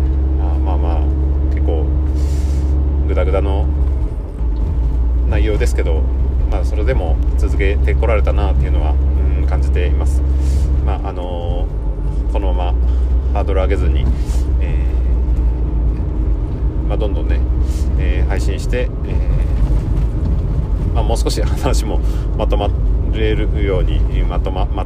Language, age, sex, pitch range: Japanese, 40-59, male, 65-80 Hz